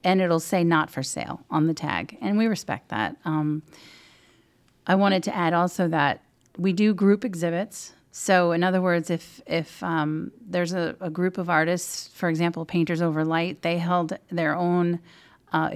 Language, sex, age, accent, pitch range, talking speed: English, female, 40-59, American, 165-190 Hz, 180 wpm